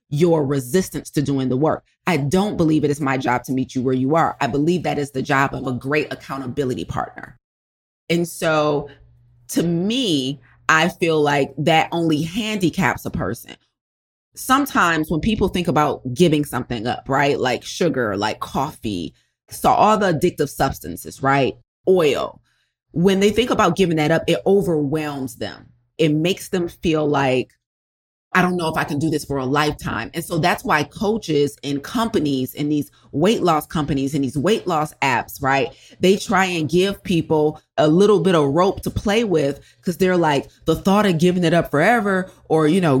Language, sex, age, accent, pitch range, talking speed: English, female, 30-49, American, 140-190 Hz, 185 wpm